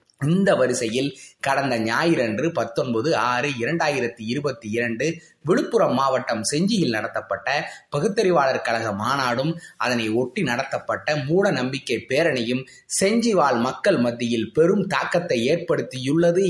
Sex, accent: male, native